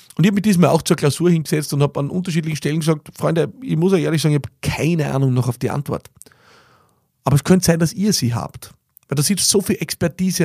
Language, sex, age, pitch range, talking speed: German, male, 30-49, 125-155 Hz, 240 wpm